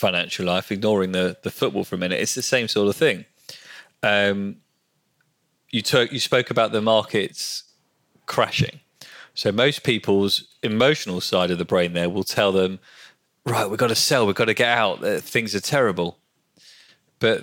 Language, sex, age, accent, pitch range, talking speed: English, male, 30-49, British, 90-110 Hz, 175 wpm